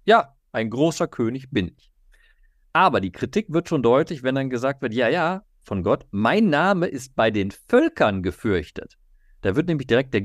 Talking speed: 185 wpm